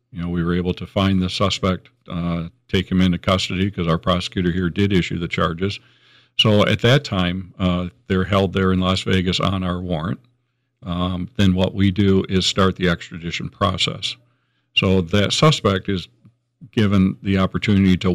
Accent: American